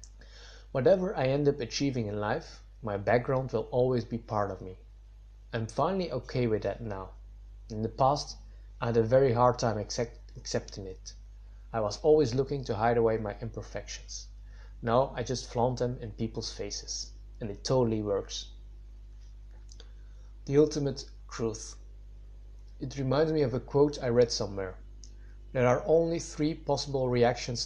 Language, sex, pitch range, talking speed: English, male, 105-135 Hz, 155 wpm